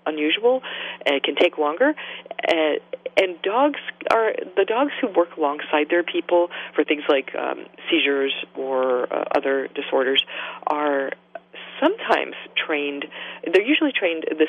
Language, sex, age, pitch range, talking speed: English, female, 40-59, 145-225 Hz, 135 wpm